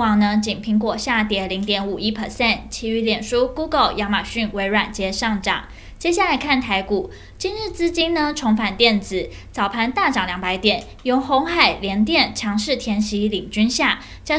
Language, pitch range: Chinese, 210-270 Hz